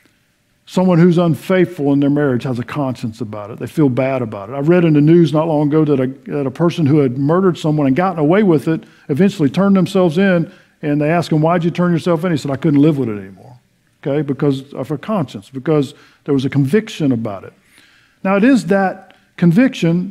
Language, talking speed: English, 225 wpm